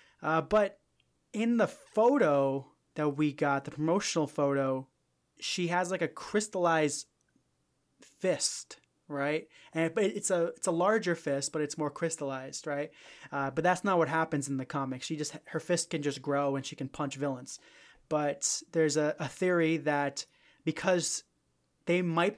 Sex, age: male, 20-39